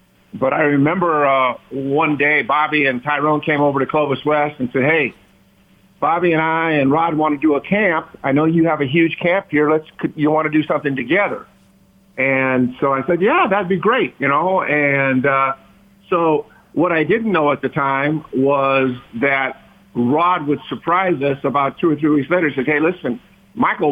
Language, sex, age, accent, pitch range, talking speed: English, male, 50-69, American, 140-170 Hz, 200 wpm